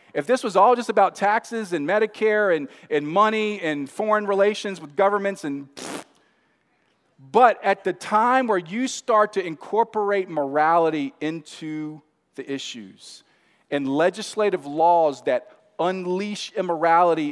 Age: 40-59